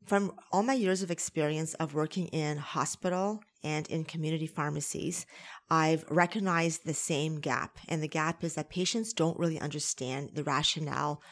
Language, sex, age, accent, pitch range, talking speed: English, female, 30-49, American, 150-175 Hz, 160 wpm